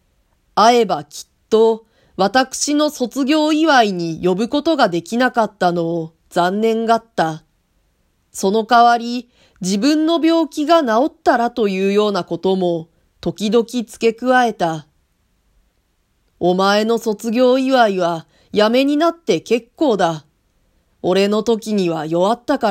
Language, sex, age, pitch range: Japanese, female, 40-59, 175-245 Hz